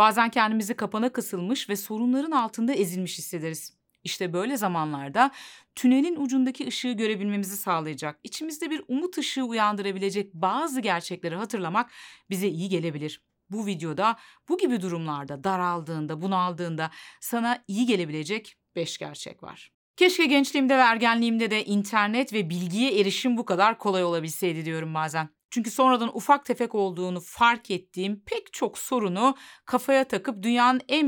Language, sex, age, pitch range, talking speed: Turkish, female, 40-59, 180-245 Hz, 135 wpm